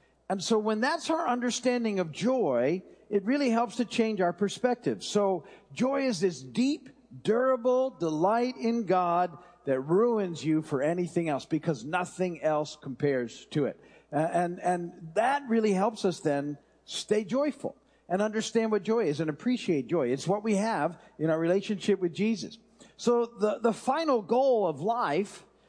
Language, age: English, 50-69